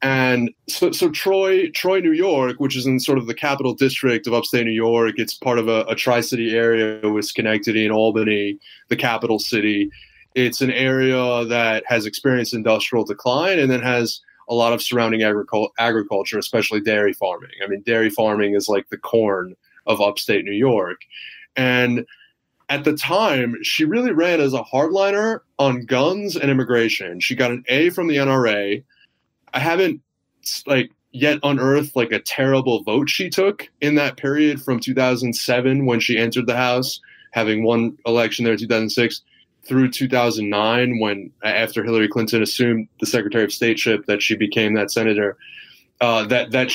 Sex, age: male, 20-39